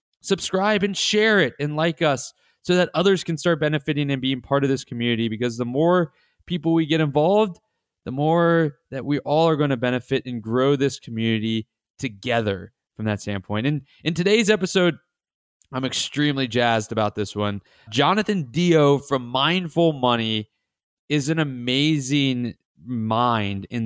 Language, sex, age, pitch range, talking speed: English, male, 20-39, 120-165 Hz, 160 wpm